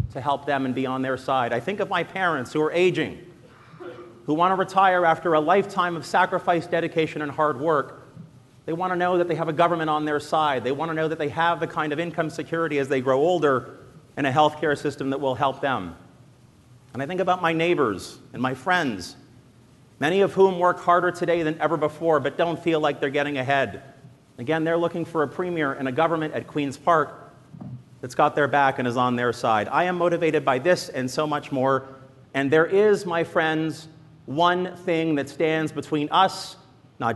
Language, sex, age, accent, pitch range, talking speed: English, male, 40-59, American, 140-175 Hz, 215 wpm